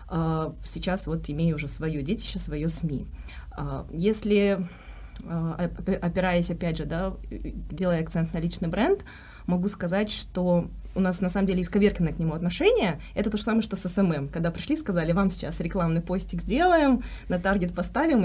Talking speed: 160 wpm